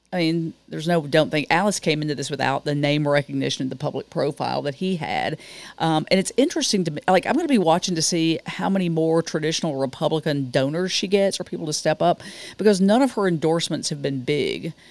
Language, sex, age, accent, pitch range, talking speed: English, female, 40-59, American, 155-185 Hz, 220 wpm